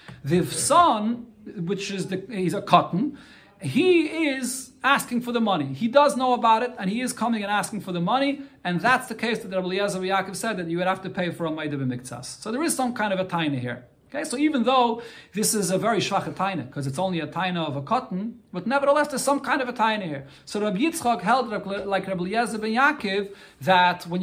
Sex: male